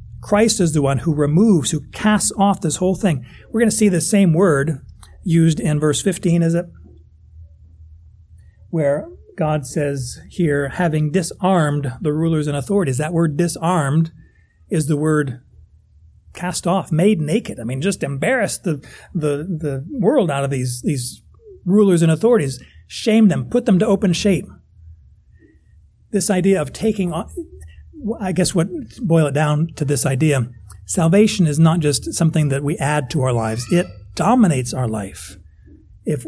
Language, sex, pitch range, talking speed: English, male, 135-185 Hz, 160 wpm